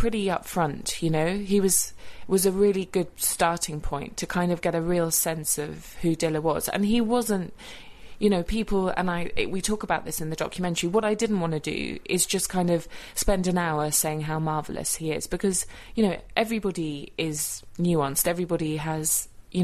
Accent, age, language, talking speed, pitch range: British, 20-39, English, 200 wpm, 160-200 Hz